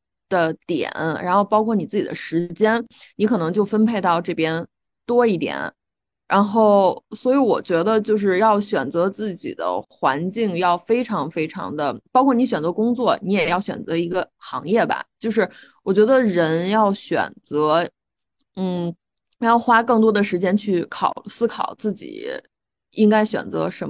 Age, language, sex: 20-39, Chinese, female